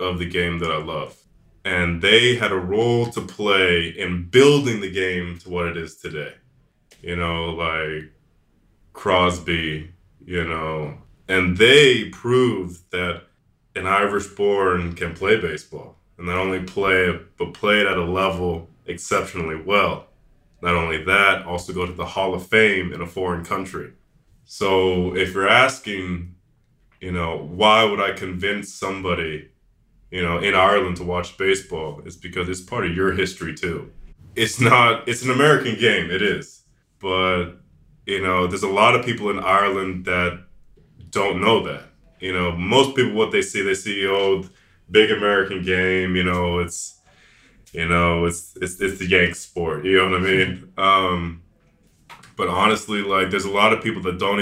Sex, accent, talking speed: male, American, 170 wpm